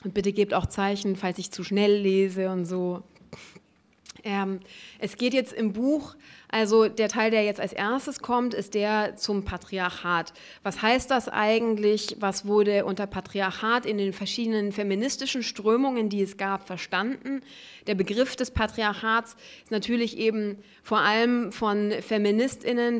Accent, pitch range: German, 195-225 Hz